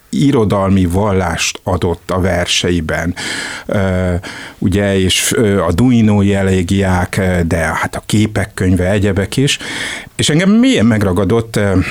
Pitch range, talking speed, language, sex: 90-105 Hz, 105 wpm, Hungarian, male